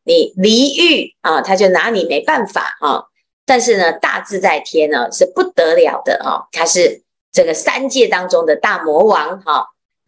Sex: female